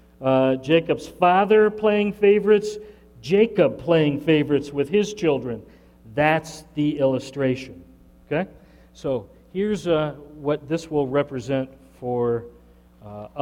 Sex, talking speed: male, 105 wpm